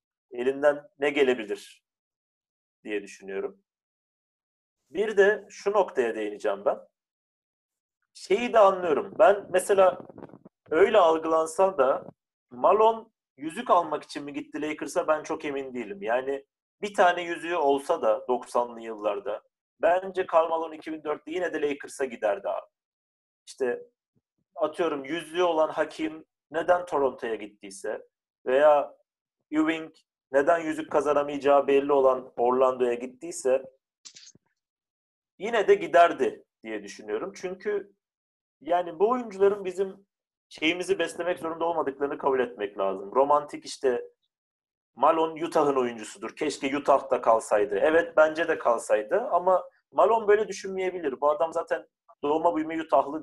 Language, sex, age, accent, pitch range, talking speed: Turkish, male, 40-59, native, 145-195 Hz, 115 wpm